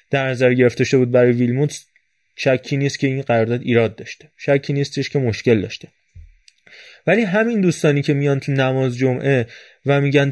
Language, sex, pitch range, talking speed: Persian, male, 125-160 Hz, 165 wpm